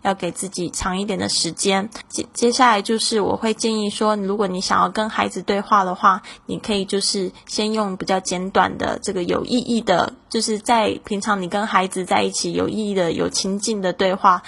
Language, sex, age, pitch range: Chinese, female, 10-29, 185-225 Hz